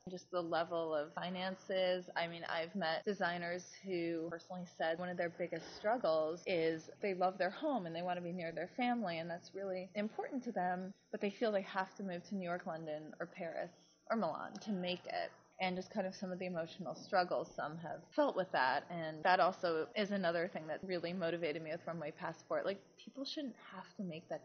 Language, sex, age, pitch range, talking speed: English, female, 20-39, 170-215 Hz, 220 wpm